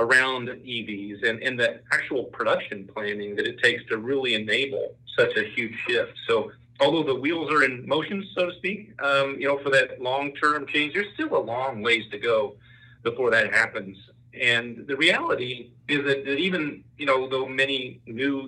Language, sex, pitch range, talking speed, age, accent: English, male, 120-170 Hz, 185 wpm, 40-59, American